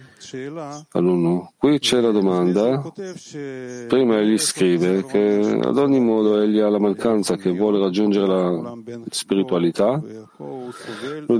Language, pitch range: Italian, 100-130 Hz